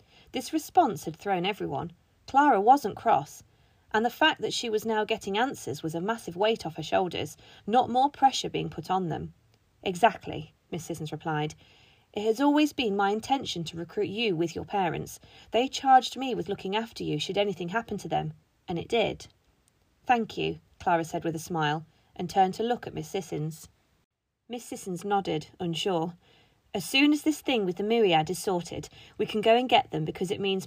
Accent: British